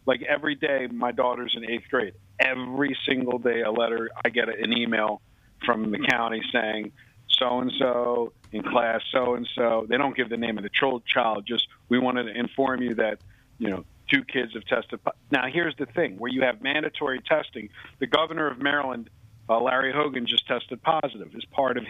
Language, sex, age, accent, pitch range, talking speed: English, male, 50-69, American, 115-135 Hz, 200 wpm